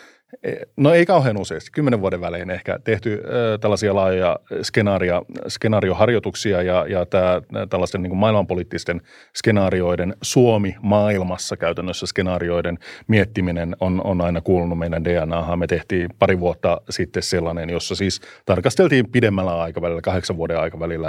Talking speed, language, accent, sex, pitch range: 130 wpm, Finnish, native, male, 90-105 Hz